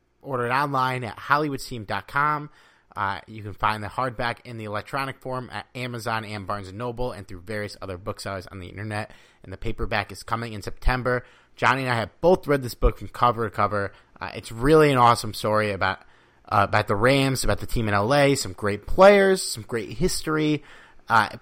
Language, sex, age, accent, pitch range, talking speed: English, male, 30-49, American, 105-145 Hz, 200 wpm